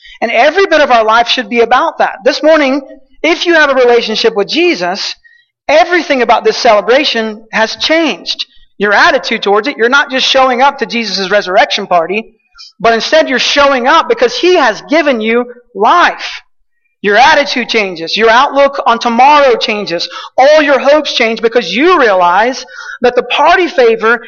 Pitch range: 225-295 Hz